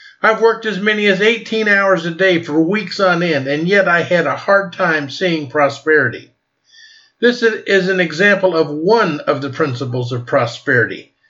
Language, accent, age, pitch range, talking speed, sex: English, American, 50-69, 170-205 Hz, 175 wpm, male